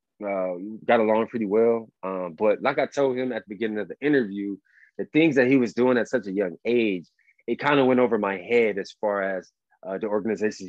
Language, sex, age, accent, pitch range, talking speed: English, male, 20-39, American, 95-120 Hz, 230 wpm